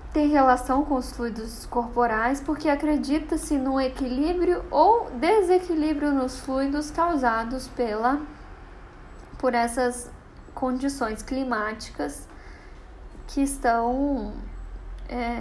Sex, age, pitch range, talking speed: female, 10-29, 235-275 Hz, 90 wpm